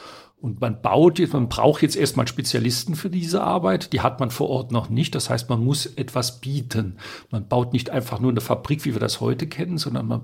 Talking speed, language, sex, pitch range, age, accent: 230 wpm, German, male, 120-145 Hz, 50-69, German